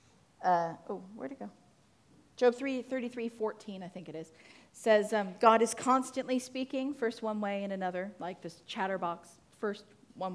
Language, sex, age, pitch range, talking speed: English, female, 40-59, 175-230 Hz, 170 wpm